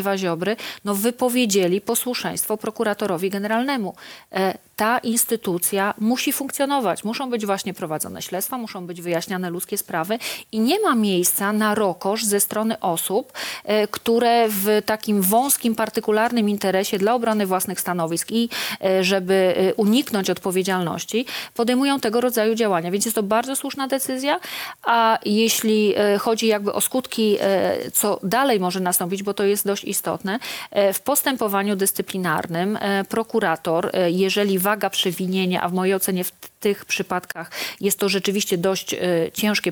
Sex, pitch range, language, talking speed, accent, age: female, 185-230 Hz, Polish, 130 wpm, native, 40-59